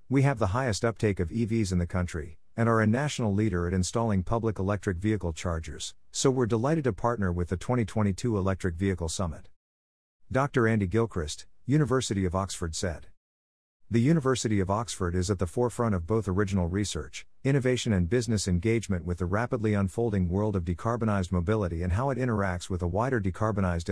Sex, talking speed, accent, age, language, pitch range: male, 180 wpm, American, 50-69, English, 90-115 Hz